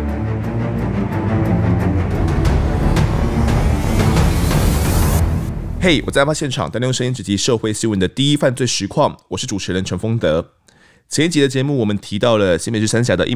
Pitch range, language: 90-120 Hz, Chinese